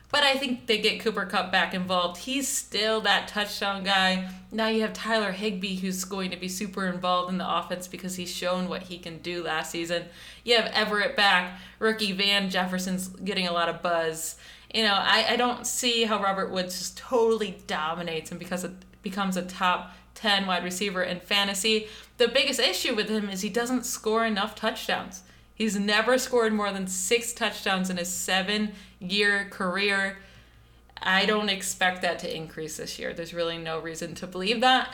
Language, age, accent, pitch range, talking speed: English, 30-49, American, 180-220 Hz, 185 wpm